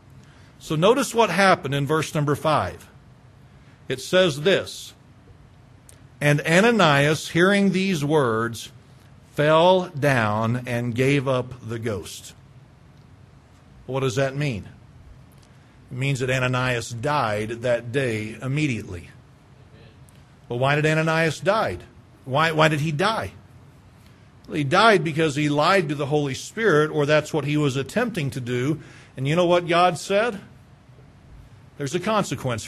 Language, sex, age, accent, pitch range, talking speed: English, male, 50-69, American, 130-195 Hz, 130 wpm